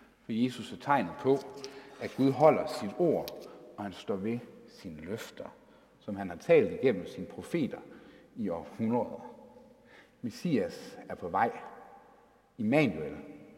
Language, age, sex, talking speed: Danish, 60-79, male, 135 wpm